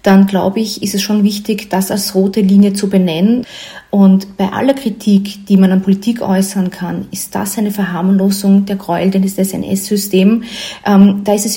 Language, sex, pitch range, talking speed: German, female, 195-245 Hz, 185 wpm